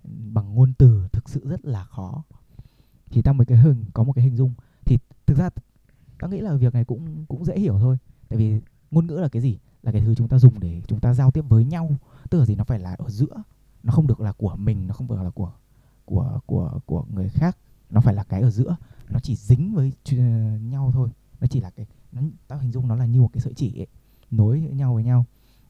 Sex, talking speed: male, 250 wpm